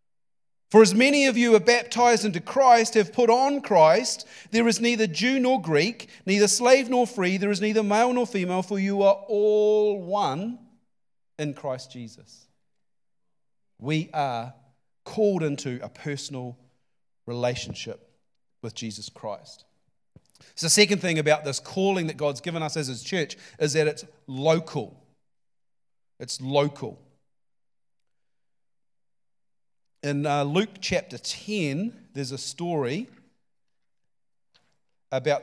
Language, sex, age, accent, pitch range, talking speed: English, male, 40-59, Australian, 150-220 Hz, 130 wpm